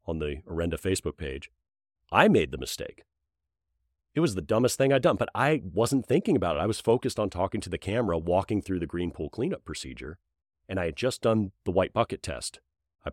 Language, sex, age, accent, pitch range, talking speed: English, male, 40-59, American, 80-110 Hz, 215 wpm